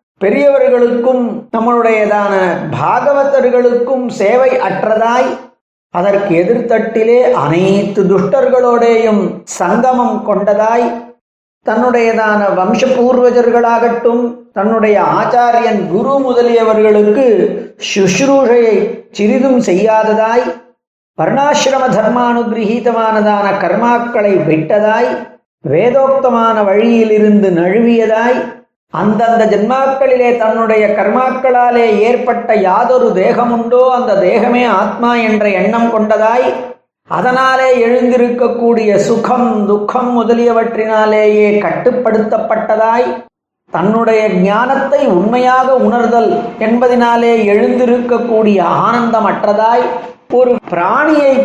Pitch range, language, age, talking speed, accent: 215-245 Hz, Tamil, 40-59, 65 wpm, native